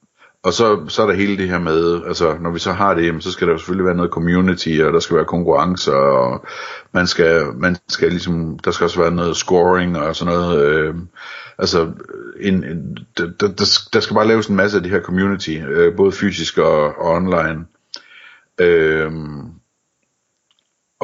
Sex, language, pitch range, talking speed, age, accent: male, Danish, 80-95 Hz, 190 wpm, 60-79, native